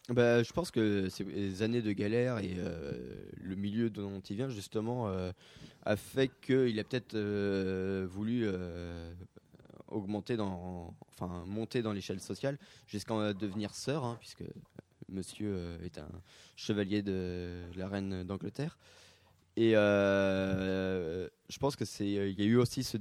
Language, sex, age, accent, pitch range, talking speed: French, male, 20-39, French, 95-115 Hz, 145 wpm